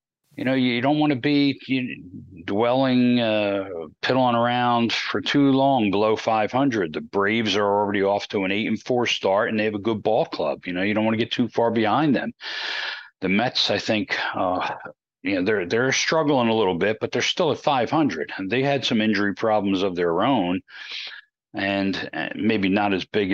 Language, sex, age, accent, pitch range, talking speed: English, male, 40-59, American, 90-115 Hz, 195 wpm